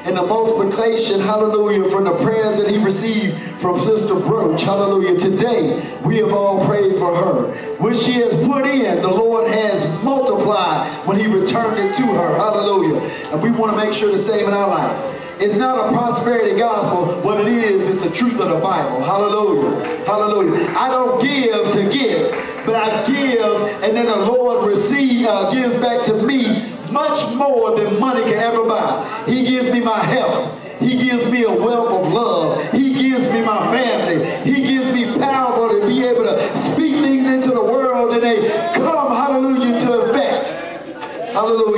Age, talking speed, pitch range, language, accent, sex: 50-69, 180 wpm, 195-240 Hz, English, American, male